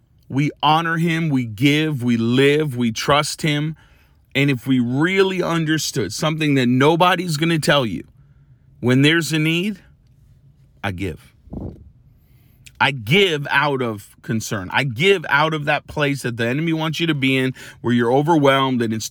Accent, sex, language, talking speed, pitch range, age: American, male, English, 160 wpm, 110-140 Hz, 40-59